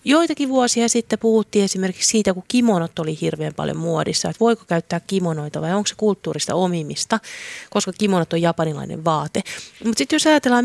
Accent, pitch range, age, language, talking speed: native, 170-225 Hz, 30-49, Finnish, 170 wpm